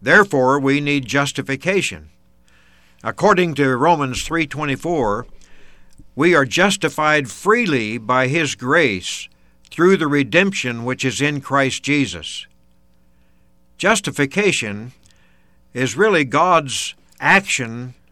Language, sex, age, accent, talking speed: English, male, 60-79, American, 95 wpm